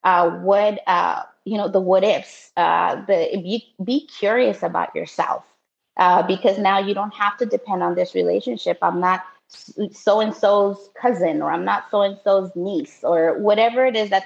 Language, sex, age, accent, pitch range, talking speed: English, female, 20-39, American, 175-210 Hz, 170 wpm